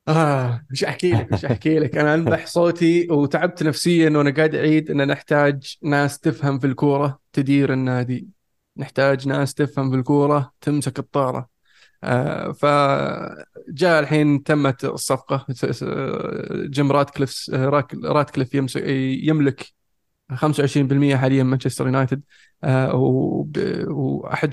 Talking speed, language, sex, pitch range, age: 115 wpm, Arabic, male, 130-145 Hz, 20-39